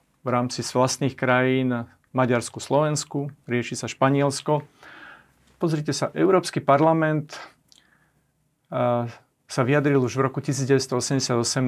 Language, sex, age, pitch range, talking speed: Slovak, male, 40-59, 120-140 Hz, 105 wpm